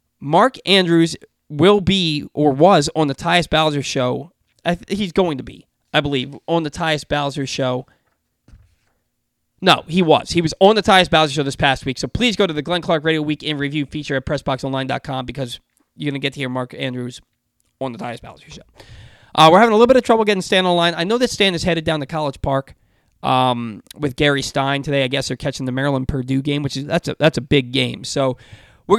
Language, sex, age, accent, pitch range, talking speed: English, male, 20-39, American, 135-170 Hz, 225 wpm